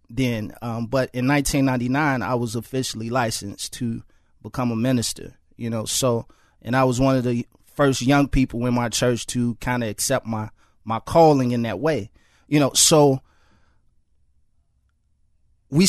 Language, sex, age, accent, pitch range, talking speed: English, male, 30-49, American, 105-155 Hz, 160 wpm